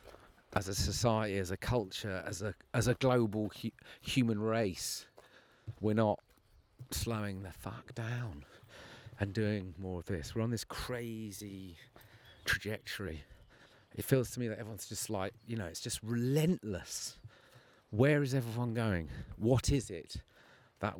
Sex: male